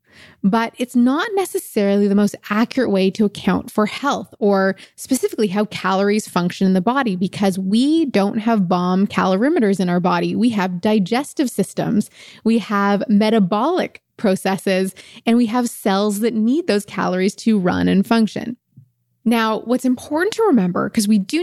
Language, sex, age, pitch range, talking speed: English, female, 20-39, 190-235 Hz, 160 wpm